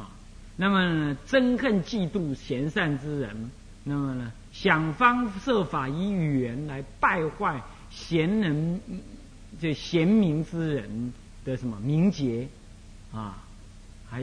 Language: Chinese